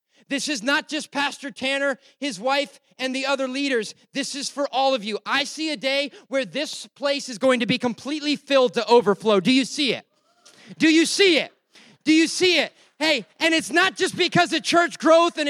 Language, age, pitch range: English, 30-49, 275-325 Hz